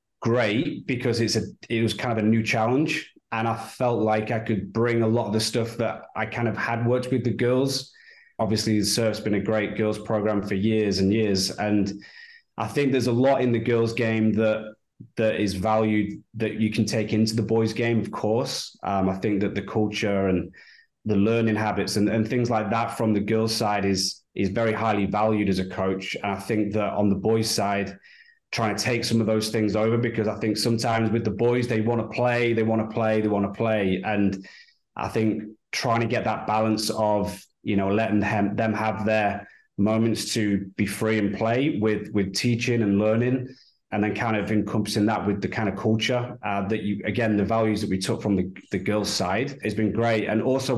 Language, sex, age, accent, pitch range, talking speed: English, male, 20-39, British, 105-115 Hz, 220 wpm